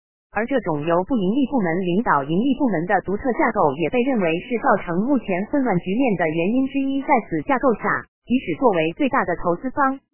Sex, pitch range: female, 175-260 Hz